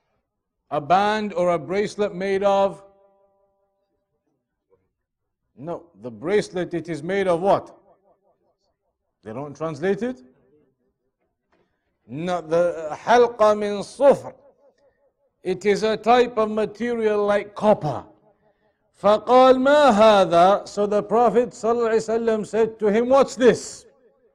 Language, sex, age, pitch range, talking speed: English, male, 50-69, 185-225 Hz, 100 wpm